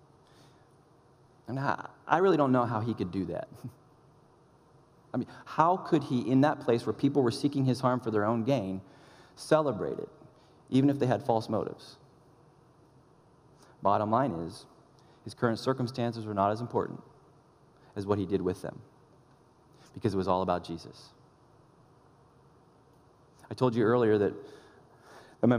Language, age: English, 30-49